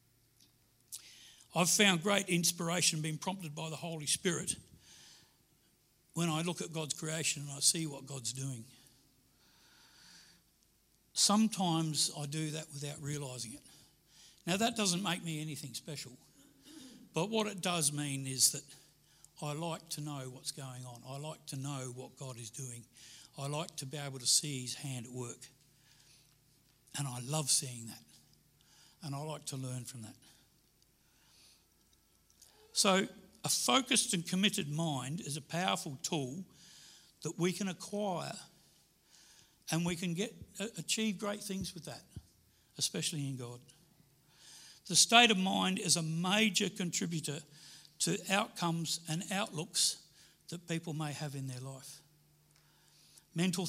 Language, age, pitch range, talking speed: English, 60-79, 140-175 Hz, 140 wpm